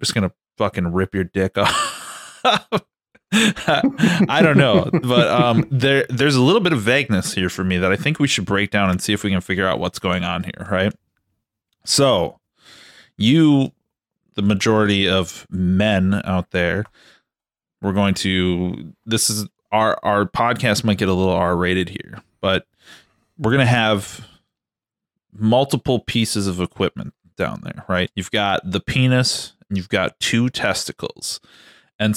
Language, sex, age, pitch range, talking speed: English, male, 20-39, 95-115 Hz, 155 wpm